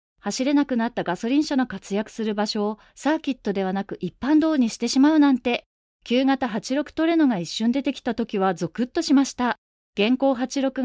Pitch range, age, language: 220-300 Hz, 30-49, Japanese